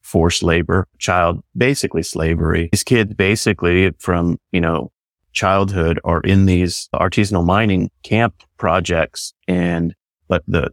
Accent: American